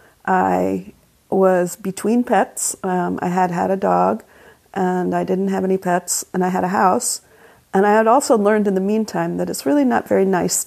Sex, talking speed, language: female, 195 wpm, English